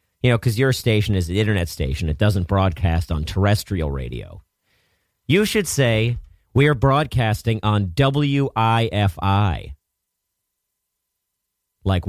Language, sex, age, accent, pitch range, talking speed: English, male, 40-59, American, 90-135 Hz, 120 wpm